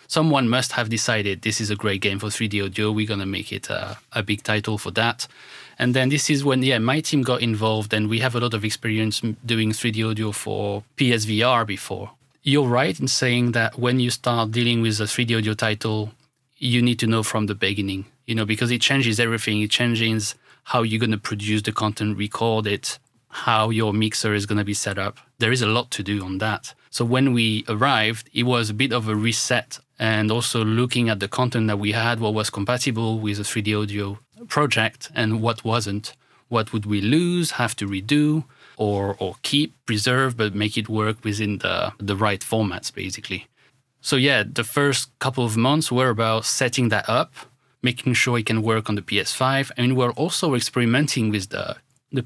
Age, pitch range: 30-49, 105-125 Hz